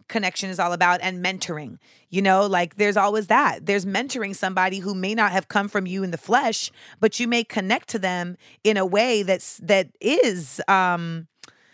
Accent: American